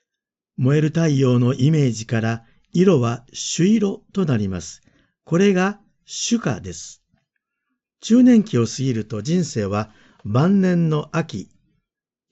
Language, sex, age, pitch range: Japanese, male, 50-69, 120-175 Hz